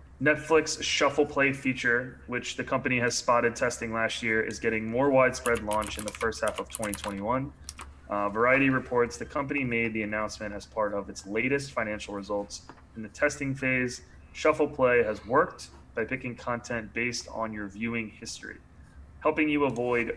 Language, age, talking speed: English, 20-39, 170 wpm